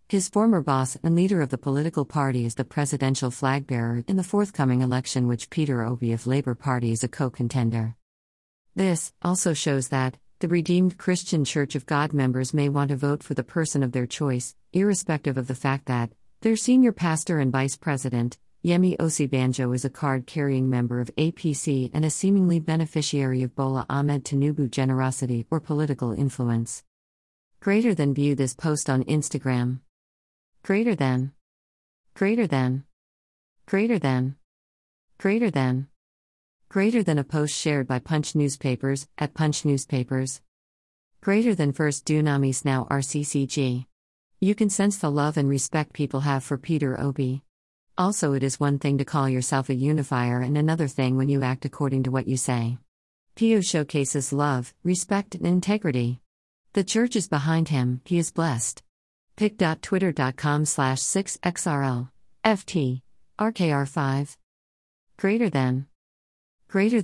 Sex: female